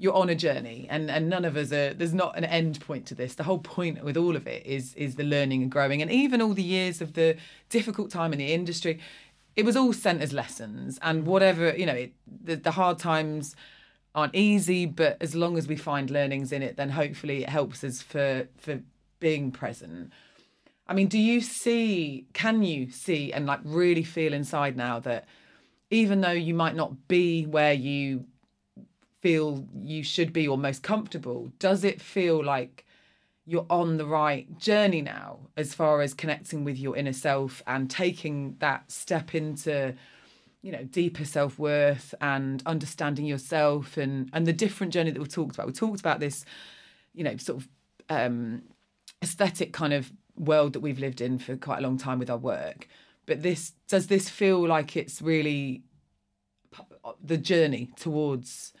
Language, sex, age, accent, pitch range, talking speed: English, female, 30-49, British, 140-175 Hz, 185 wpm